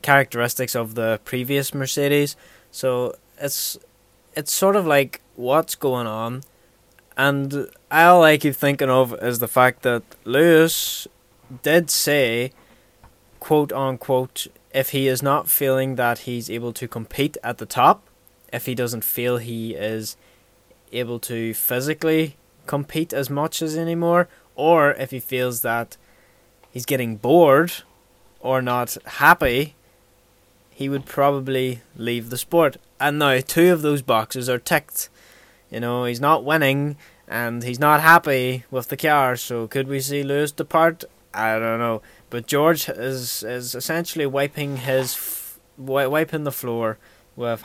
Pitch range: 120-145 Hz